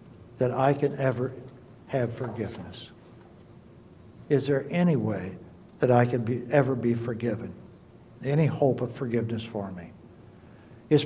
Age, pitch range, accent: 60-79, 125-170 Hz, American